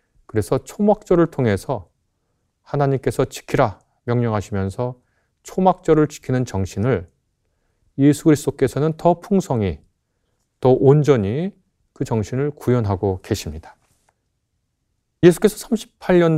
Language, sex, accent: Korean, male, native